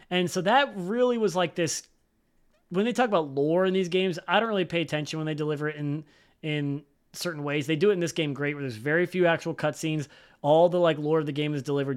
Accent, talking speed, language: American, 250 wpm, English